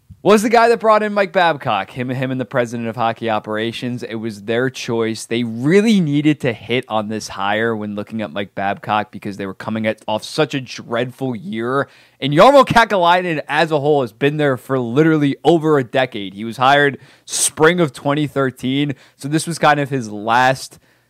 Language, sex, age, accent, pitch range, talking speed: English, male, 20-39, American, 115-150 Hz, 205 wpm